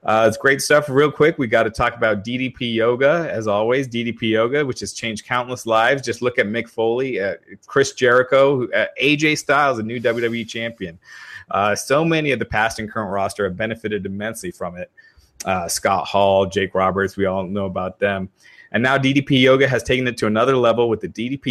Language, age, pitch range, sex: English, 30-49, 105-125 Hz, male